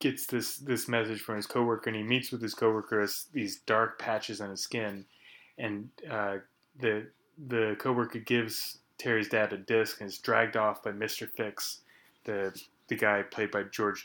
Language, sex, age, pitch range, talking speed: English, male, 20-39, 110-125 Hz, 185 wpm